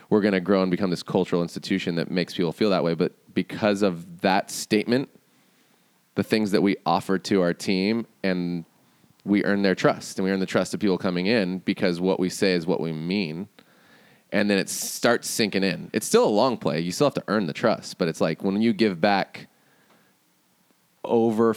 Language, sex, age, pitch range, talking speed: English, male, 20-39, 85-100 Hz, 210 wpm